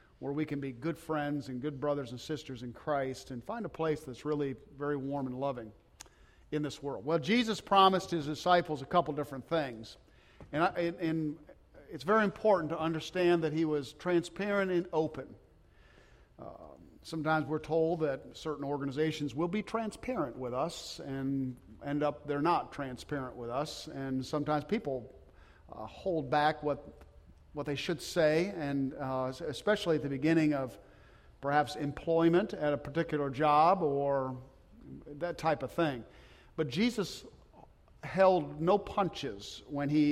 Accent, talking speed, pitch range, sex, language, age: American, 155 wpm, 130-165 Hz, male, English, 50-69